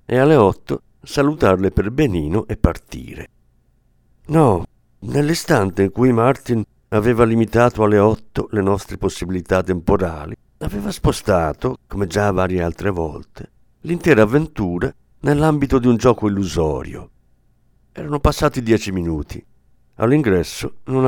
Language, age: Italian, 50-69